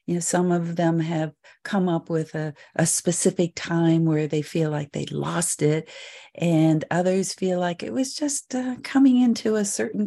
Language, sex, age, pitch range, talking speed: English, female, 50-69, 155-185 Hz, 190 wpm